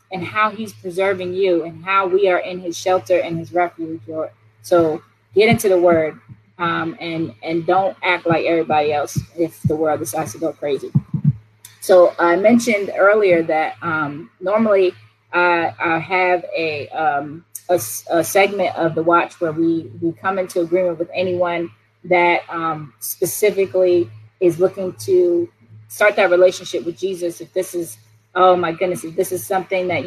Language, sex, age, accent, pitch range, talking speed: English, female, 20-39, American, 165-195 Hz, 165 wpm